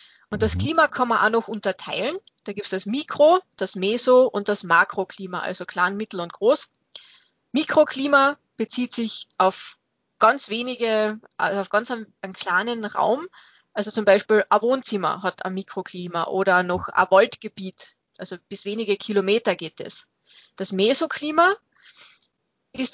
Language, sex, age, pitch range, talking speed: German, female, 20-39, 195-245 Hz, 150 wpm